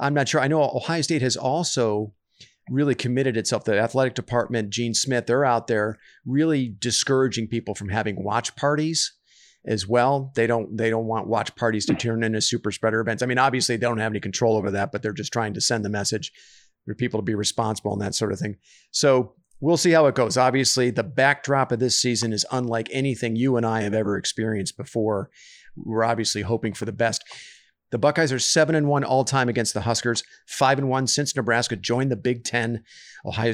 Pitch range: 110-135 Hz